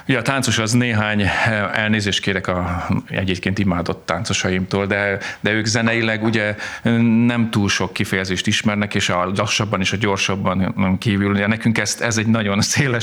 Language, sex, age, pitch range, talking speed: Hungarian, male, 40-59, 90-110 Hz, 160 wpm